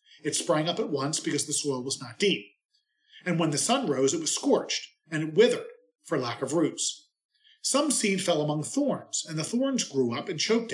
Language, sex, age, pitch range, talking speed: English, male, 40-59, 140-220 Hz, 210 wpm